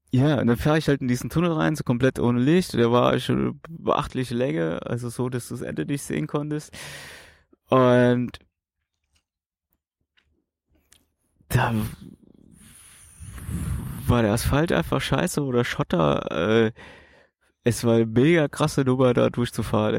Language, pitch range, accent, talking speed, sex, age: German, 90-130 Hz, German, 140 wpm, male, 20-39